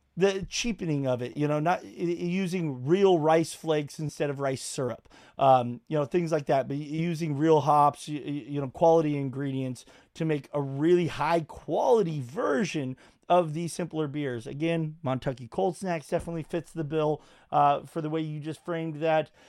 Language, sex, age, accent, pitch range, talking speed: English, male, 30-49, American, 145-175 Hz, 175 wpm